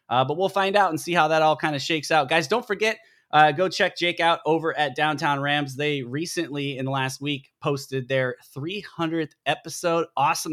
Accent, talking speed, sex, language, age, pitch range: American, 210 wpm, male, English, 20-39, 135-165 Hz